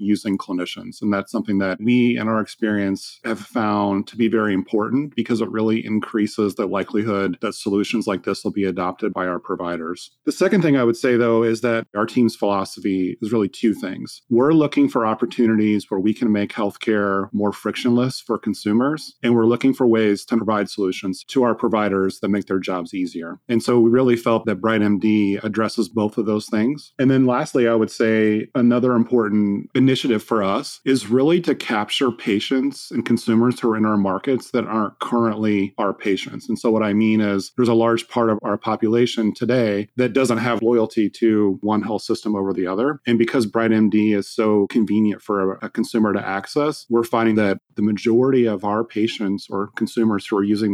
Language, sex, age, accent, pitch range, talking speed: English, male, 40-59, American, 100-120 Hz, 195 wpm